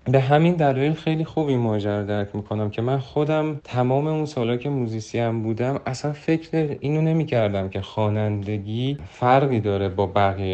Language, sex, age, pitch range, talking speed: Persian, male, 40-59, 95-130 Hz, 165 wpm